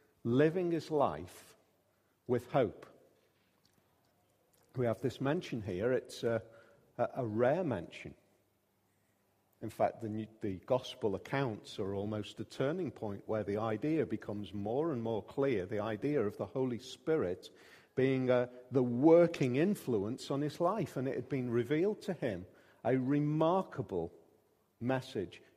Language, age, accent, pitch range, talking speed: English, 50-69, British, 110-140 Hz, 135 wpm